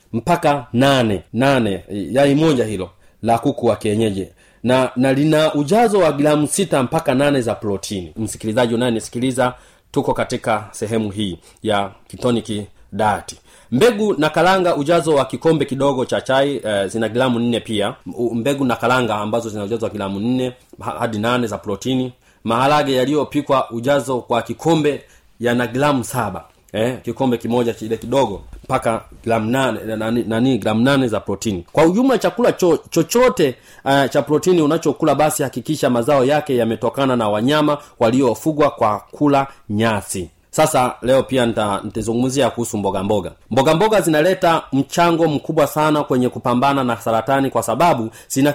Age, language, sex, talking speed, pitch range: 30-49, Swahili, male, 145 wpm, 110-145 Hz